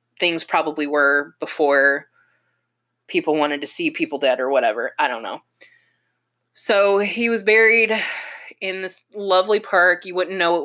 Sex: female